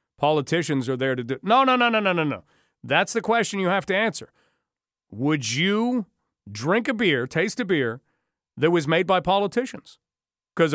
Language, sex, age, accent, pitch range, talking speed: English, male, 40-59, American, 145-195 Hz, 185 wpm